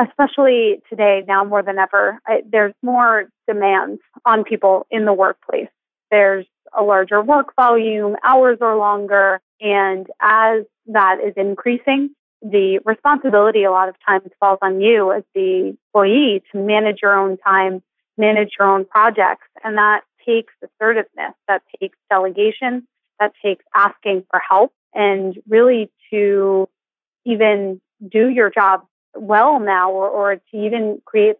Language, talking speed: English, 145 wpm